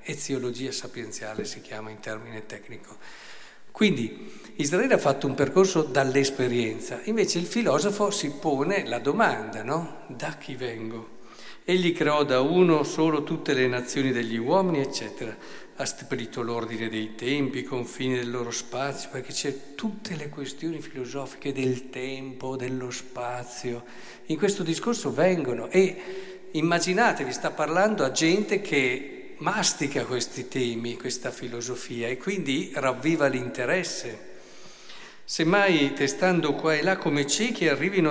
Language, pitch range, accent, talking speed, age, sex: Italian, 125-160 Hz, native, 130 wpm, 50-69, male